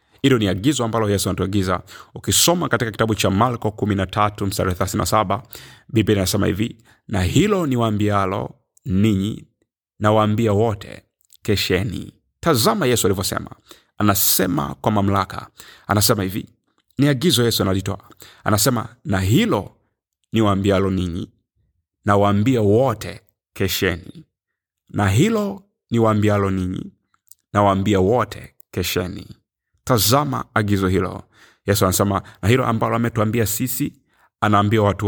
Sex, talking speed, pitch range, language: male, 105 wpm, 100-120 Hz, Swahili